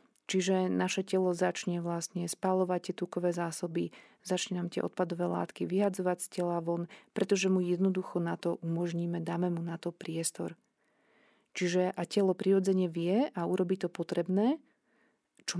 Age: 30-49